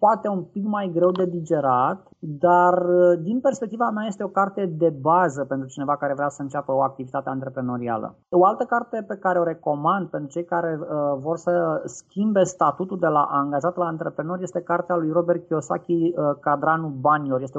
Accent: native